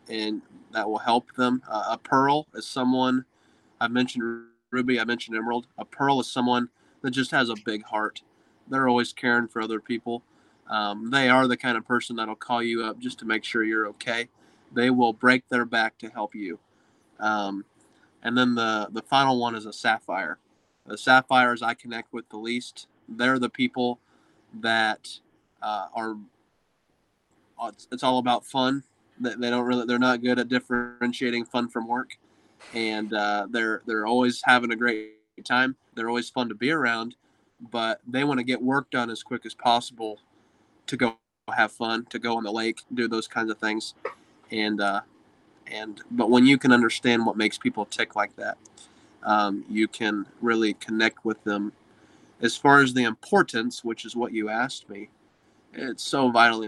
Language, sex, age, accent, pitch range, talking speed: English, male, 20-39, American, 110-125 Hz, 180 wpm